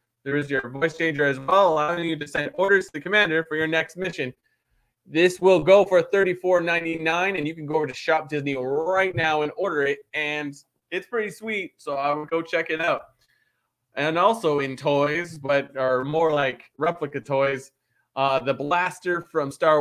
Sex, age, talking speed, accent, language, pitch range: male, 20-39, 190 wpm, American, English, 140-180 Hz